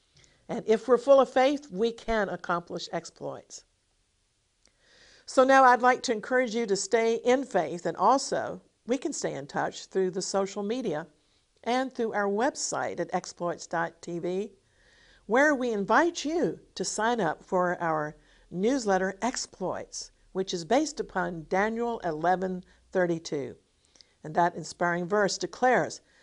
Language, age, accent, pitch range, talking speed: English, 50-69, American, 175-235 Hz, 140 wpm